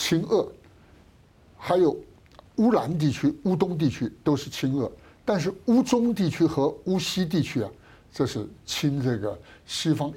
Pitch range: 125-185 Hz